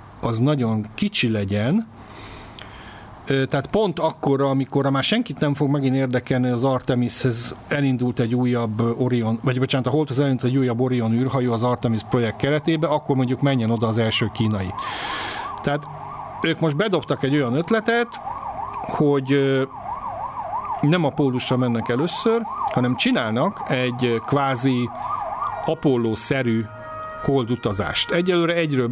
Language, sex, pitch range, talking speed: Hungarian, male, 120-145 Hz, 130 wpm